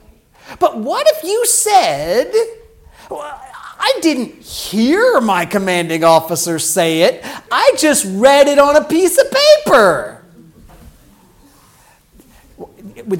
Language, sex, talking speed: English, male, 105 wpm